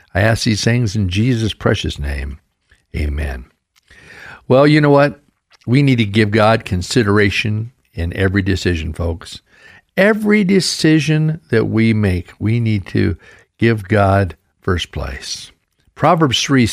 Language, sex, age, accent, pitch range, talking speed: English, male, 60-79, American, 100-145 Hz, 135 wpm